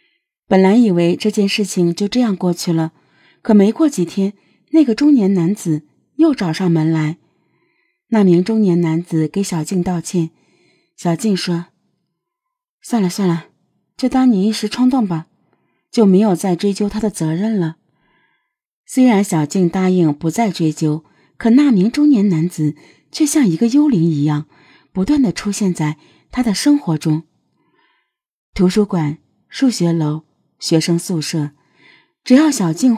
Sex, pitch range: female, 165-245 Hz